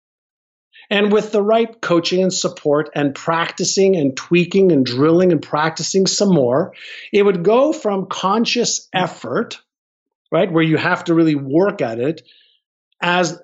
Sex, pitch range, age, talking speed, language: male, 155-210 Hz, 50-69, 145 wpm, English